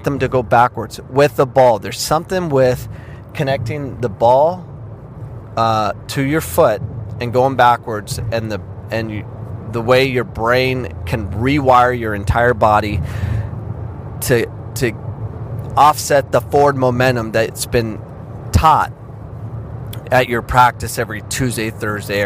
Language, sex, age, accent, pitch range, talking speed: English, male, 30-49, American, 110-135 Hz, 130 wpm